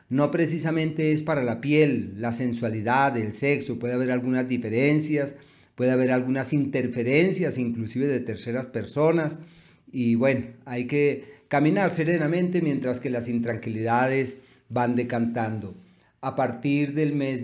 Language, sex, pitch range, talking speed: Spanish, male, 120-150 Hz, 130 wpm